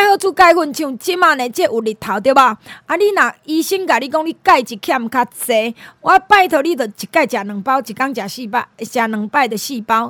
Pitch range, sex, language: 225-315 Hz, female, Chinese